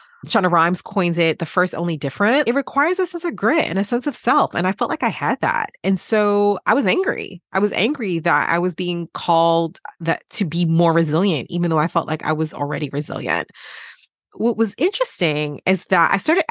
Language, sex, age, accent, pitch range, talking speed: English, female, 30-49, American, 165-245 Hz, 220 wpm